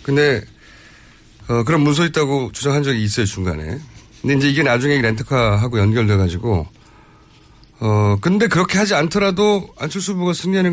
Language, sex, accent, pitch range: Korean, male, native, 110-170 Hz